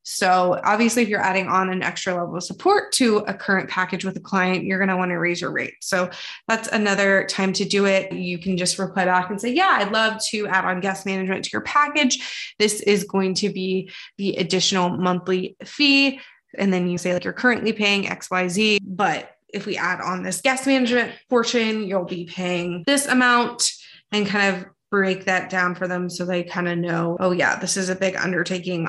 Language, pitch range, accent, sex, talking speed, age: English, 180-220 Hz, American, female, 220 wpm, 20-39